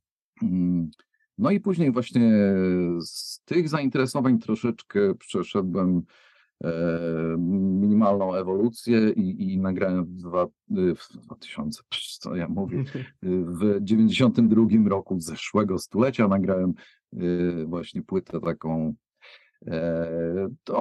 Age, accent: 50-69, native